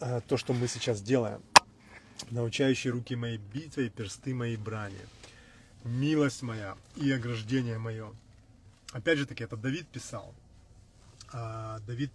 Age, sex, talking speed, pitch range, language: 20-39, male, 125 wpm, 110-125 Hz, Russian